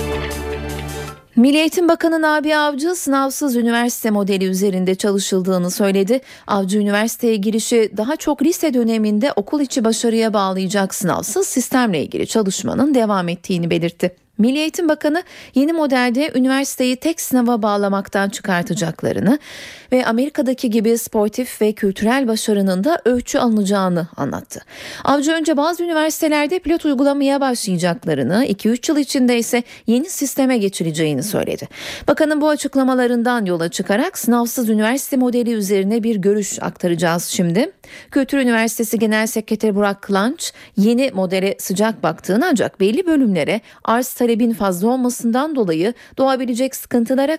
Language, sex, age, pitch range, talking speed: Turkish, female, 30-49, 200-275 Hz, 125 wpm